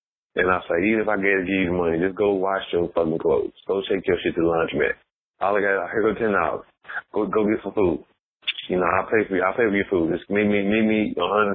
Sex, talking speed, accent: male, 300 wpm, American